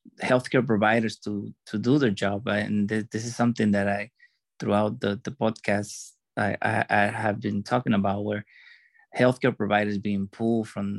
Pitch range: 100-120 Hz